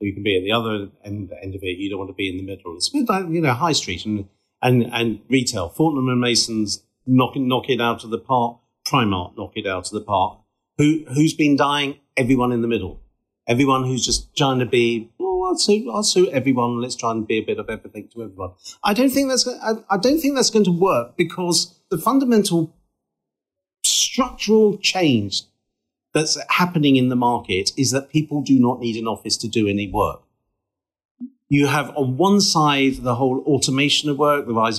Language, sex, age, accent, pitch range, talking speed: English, male, 40-59, British, 110-155 Hz, 210 wpm